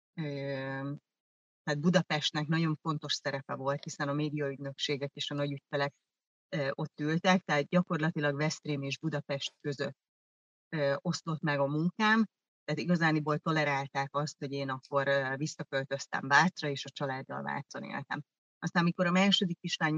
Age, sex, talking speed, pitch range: 30-49, female, 130 wpm, 140-160 Hz